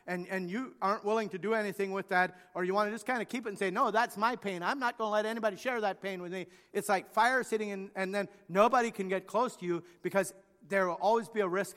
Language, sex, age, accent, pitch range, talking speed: English, male, 50-69, American, 180-220 Hz, 285 wpm